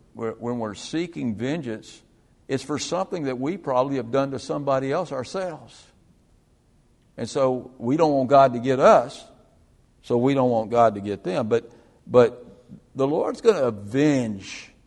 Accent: American